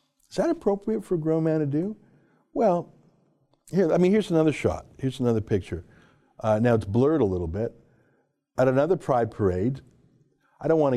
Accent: American